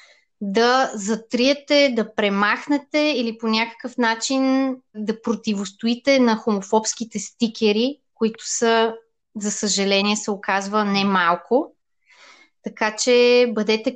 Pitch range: 205-245 Hz